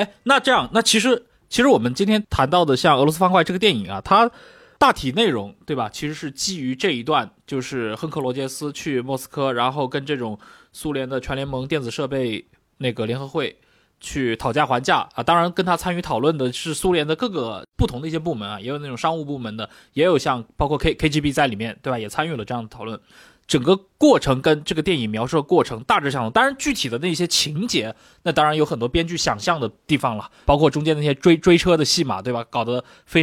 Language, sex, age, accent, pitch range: Chinese, male, 20-39, native, 130-175 Hz